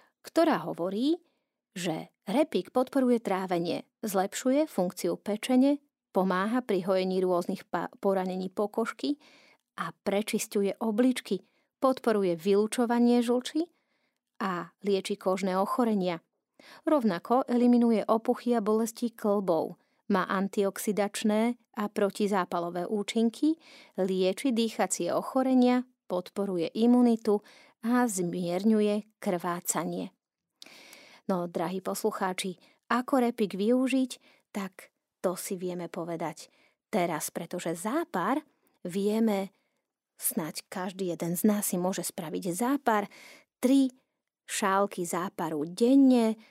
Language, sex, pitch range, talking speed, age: Slovak, female, 185-245 Hz, 95 wpm, 30-49